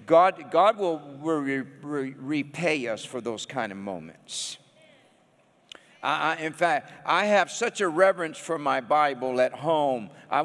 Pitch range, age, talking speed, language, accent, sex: 135-190 Hz, 50-69, 155 wpm, English, American, male